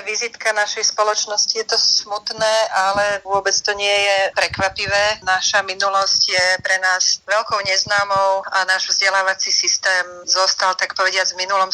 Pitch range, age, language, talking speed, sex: 180-200 Hz, 30-49, Slovak, 145 wpm, female